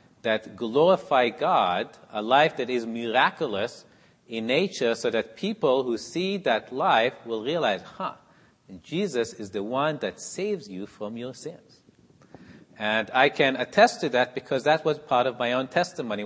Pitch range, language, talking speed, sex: 120-170 Hz, English, 160 wpm, male